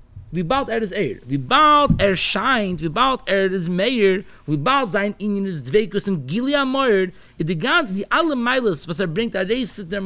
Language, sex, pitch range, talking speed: English, male, 165-225 Hz, 180 wpm